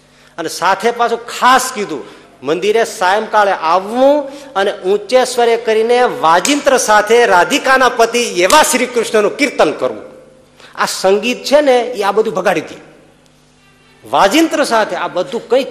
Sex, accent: male, native